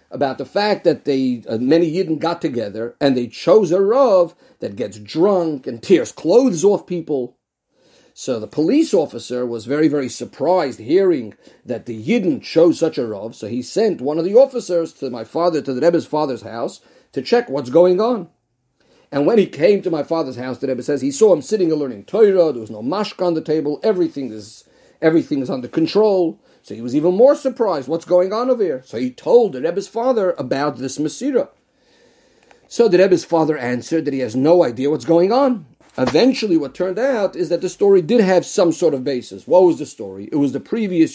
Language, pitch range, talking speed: English, 140-200 Hz, 210 wpm